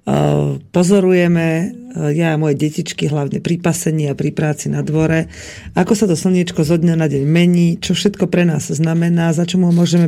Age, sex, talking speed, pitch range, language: 40-59, female, 180 wpm, 155-195 Hz, Slovak